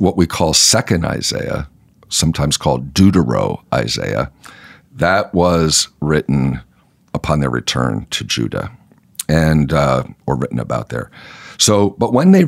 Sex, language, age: male, English, 50-69